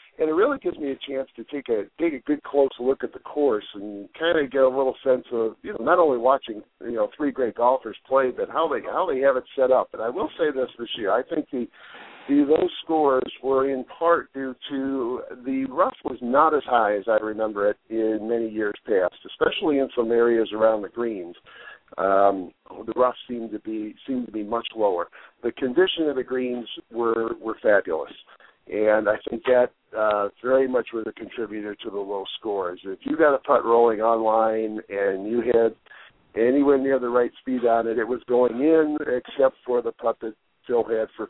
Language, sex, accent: English, male, American